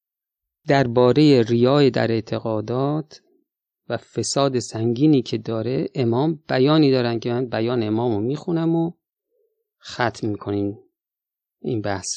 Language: Persian